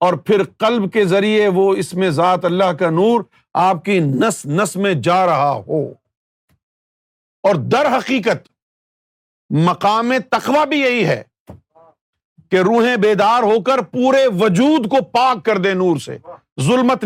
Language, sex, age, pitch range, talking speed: Urdu, male, 50-69, 175-240 Hz, 150 wpm